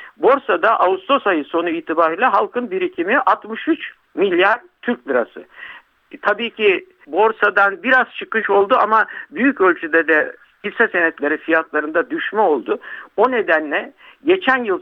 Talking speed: 125 wpm